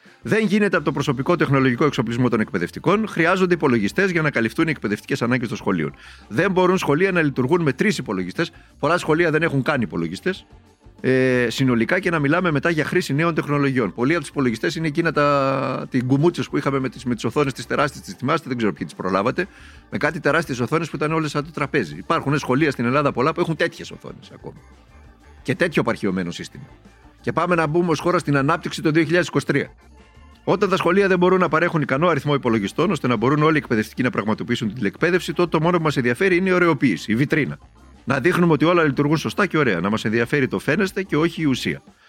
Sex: male